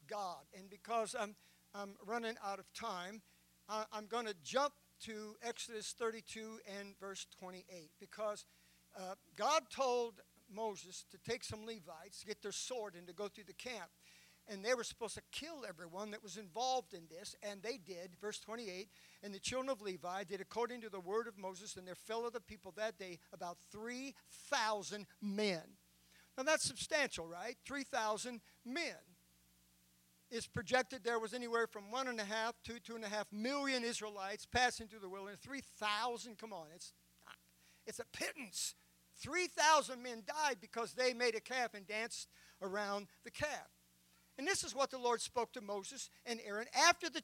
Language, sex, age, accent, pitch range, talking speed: English, male, 60-79, American, 190-250 Hz, 180 wpm